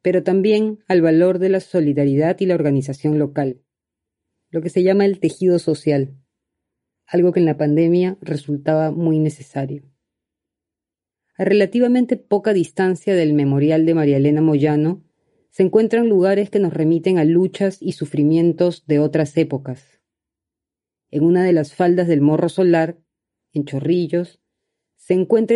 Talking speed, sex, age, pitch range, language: 145 wpm, female, 30-49, 145-180 Hz, Spanish